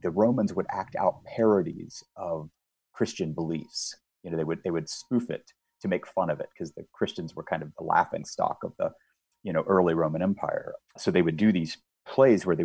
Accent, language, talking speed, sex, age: American, English, 220 wpm, male, 30-49